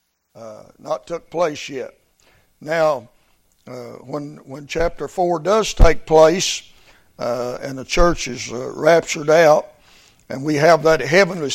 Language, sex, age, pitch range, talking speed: English, male, 60-79, 140-180 Hz, 140 wpm